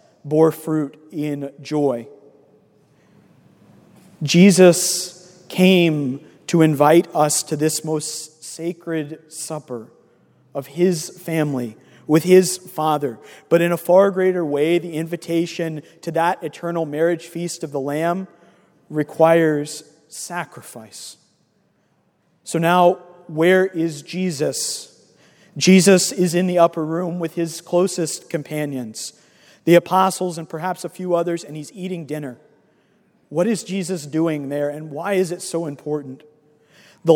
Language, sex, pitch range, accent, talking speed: English, male, 150-180 Hz, American, 125 wpm